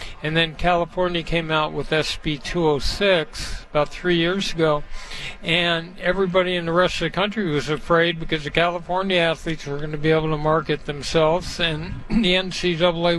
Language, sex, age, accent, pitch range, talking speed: English, male, 60-79, American, 155-180 Hz, 175 wpm